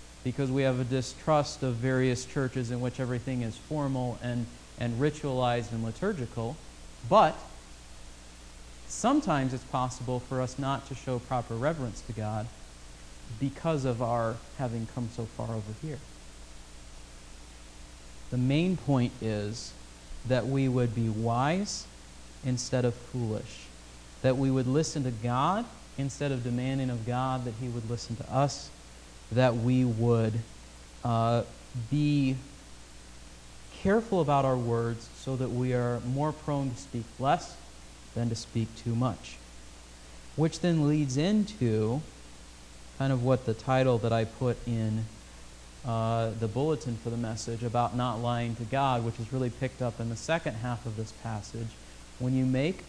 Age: 40-59